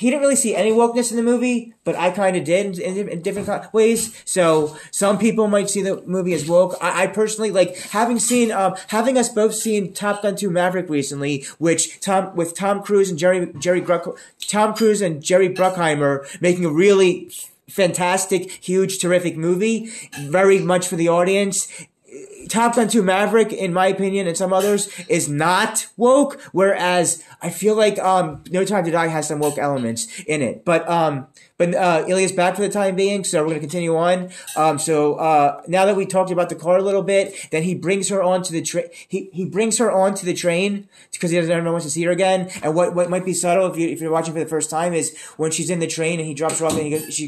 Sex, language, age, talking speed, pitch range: male, English, 20-39, 225 wpm, 165-200 Hz